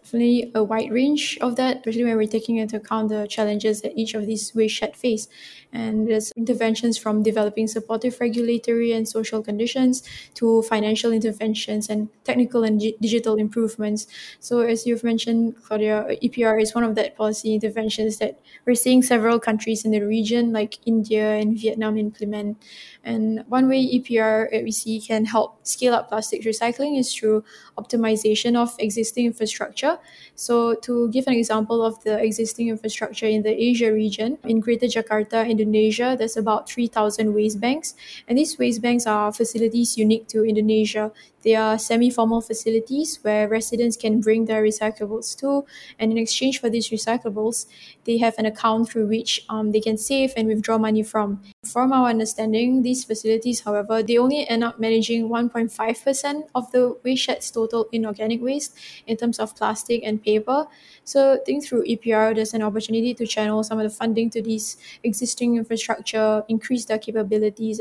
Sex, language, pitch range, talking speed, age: female, English, 215-235 Hz, 165 wpm, 10-29